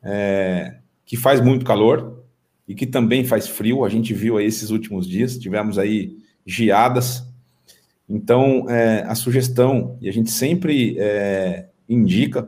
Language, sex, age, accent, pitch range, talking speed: Portuguese, male, 40-59, Brazilian, 115-155 Hz, 145 wpm